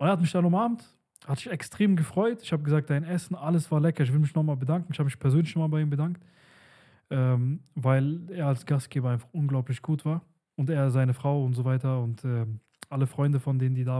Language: German